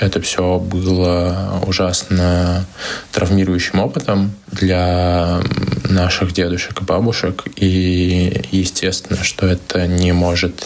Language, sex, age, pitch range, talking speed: Russian, male, 20-39, 90-100 Hz, 95 wpm